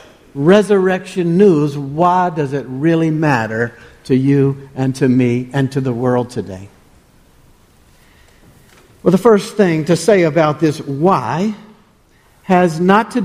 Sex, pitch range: male, 150-190 Hz